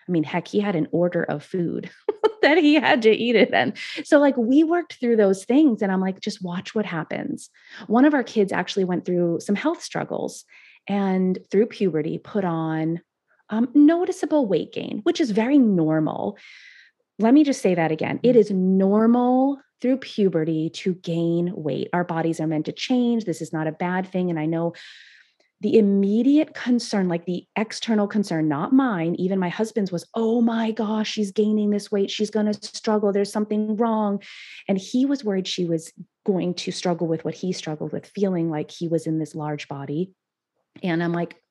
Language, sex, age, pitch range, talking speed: English, female, 30-49, 175-230 Hz, 195 wpm